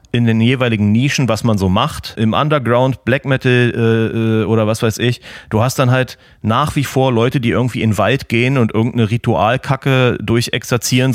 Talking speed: 190 wpm